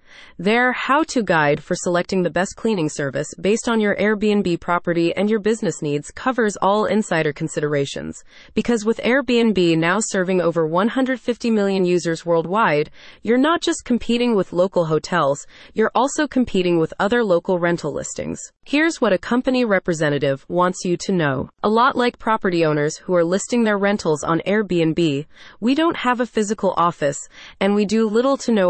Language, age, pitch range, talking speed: English, 30-49, 170-235 Hz, 165 wpm